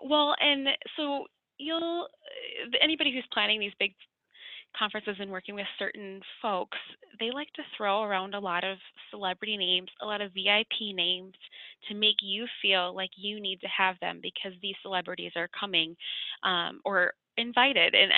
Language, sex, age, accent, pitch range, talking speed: English, female, 20-39, American, 185-230 Hz, 160 wpm